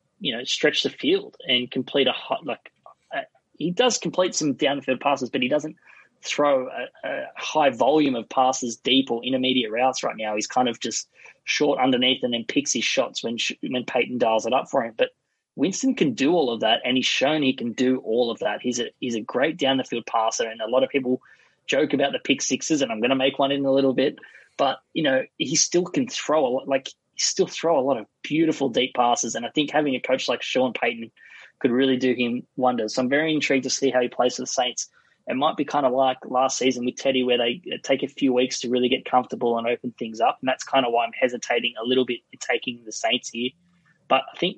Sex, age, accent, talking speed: male, 20-39, Australian, 250 wpm